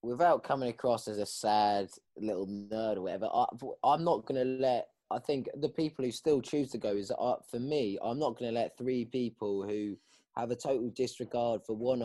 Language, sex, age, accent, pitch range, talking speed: English, male, 20-39, British, 105-125 Hz, 215 wpm